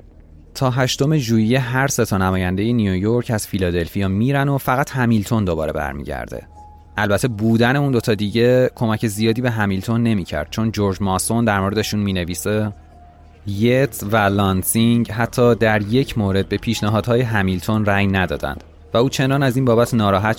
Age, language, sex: 30-49, Persian, male